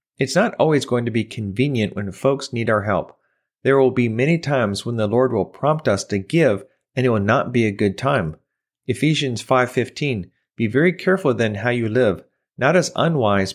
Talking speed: 200 wpm